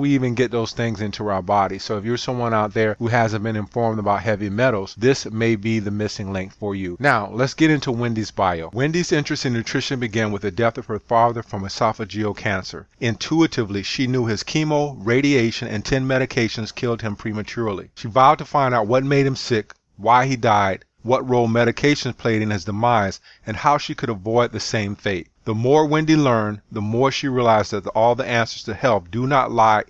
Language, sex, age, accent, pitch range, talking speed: English, male, 40-59, American, 105-130 Hz, 215 wpm